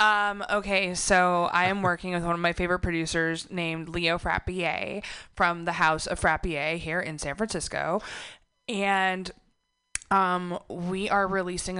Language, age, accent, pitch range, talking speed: English, 20-39, American, 155-180 Hz, 150 wpm